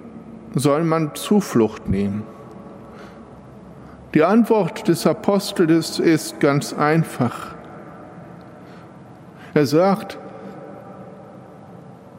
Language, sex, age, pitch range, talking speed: German, male, 60-79, 130-165 Hz, 65 wpm